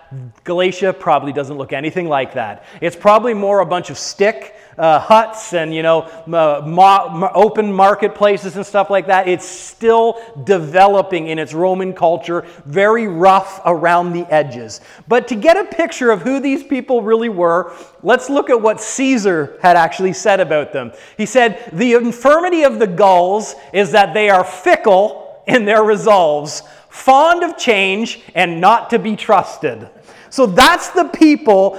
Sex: male